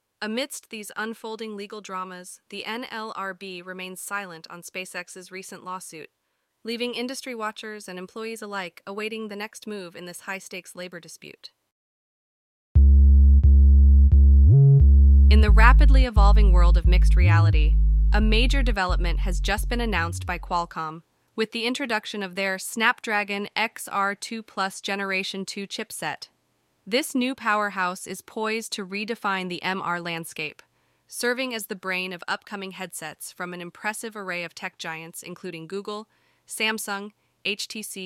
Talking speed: 130 wpm